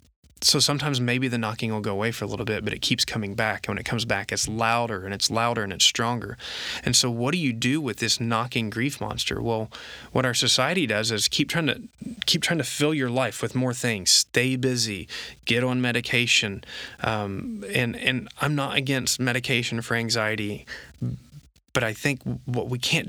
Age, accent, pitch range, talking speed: 20-39, American, 110-130 Hz, 205 wpm